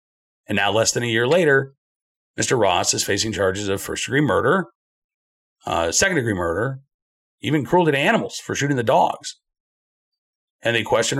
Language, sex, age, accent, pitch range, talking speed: English, male, 50-69, American, 120-170 Hz, 155 wpm